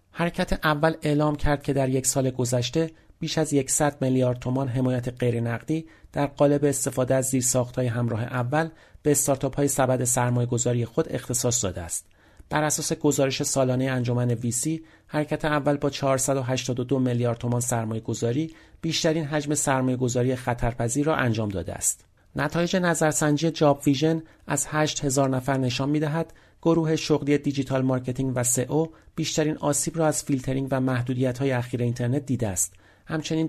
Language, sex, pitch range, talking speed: Persian, male, 125-150 Hz, 155 wpm